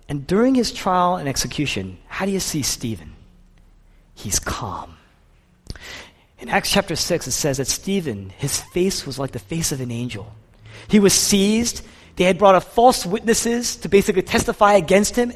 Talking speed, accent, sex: 170 wpm, American, male